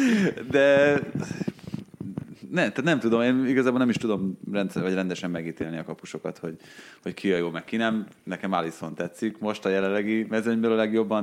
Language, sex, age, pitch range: Hungarian, male, 30-49, 85-105 Hz